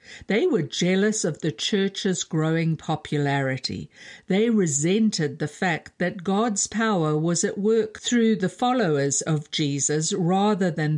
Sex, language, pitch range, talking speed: female, English, 150-205 Hz, 135 wpm